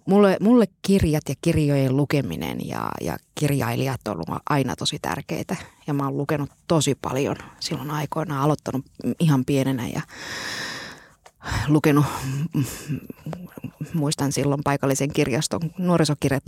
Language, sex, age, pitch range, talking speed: Finnish, female, 20-39, 140-175 Hz, 115 wpm